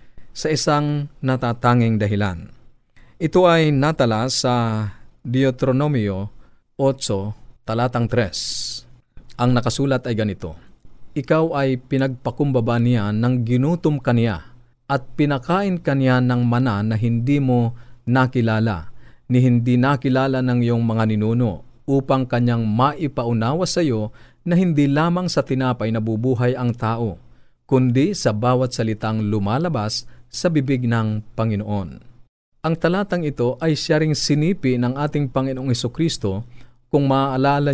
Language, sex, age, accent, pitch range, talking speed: Filipino, male, 40-59, native, 115-135 Hz, 120 wpm